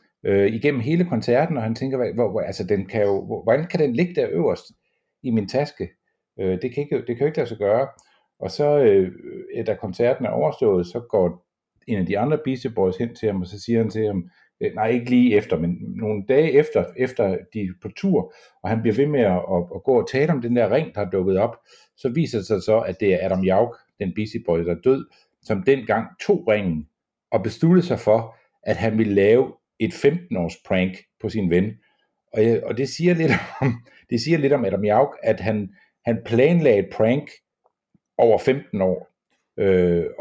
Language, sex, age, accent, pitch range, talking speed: Danish, male, 60-79, native, 95-135 Hz, 215 wpm